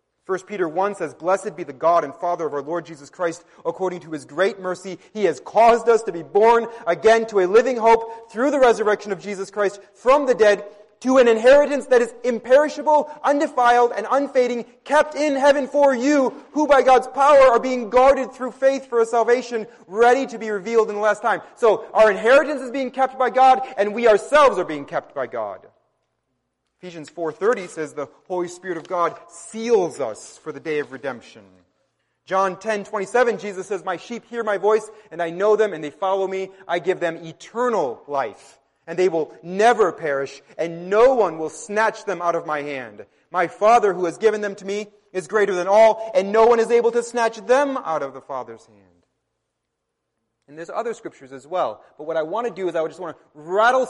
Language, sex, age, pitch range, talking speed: English, male, 30-49, 170-240 Hz, 205 wpm